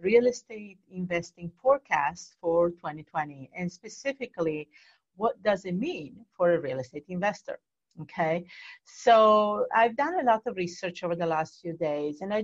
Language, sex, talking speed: English, female, 155 wpm